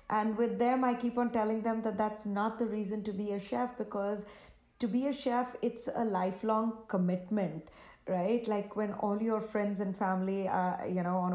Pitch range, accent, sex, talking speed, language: 195-235 Hz, Indian, female, 200 wpm, English